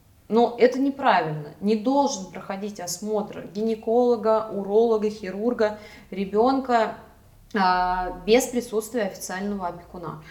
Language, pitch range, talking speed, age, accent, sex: Russian, 185-235 Hz, 85 wpm, 20-39, native, female